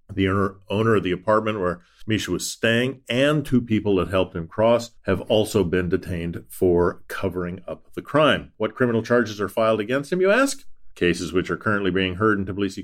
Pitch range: 90-115 Hz